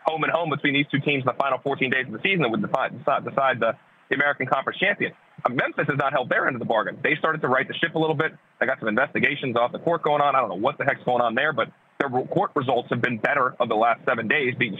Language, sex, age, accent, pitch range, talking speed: English, male, 30-49, American, 125-160 Hz, 290 wpm